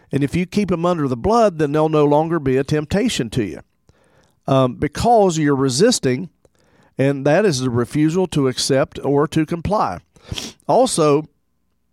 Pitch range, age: 130-160 Hz, 50-69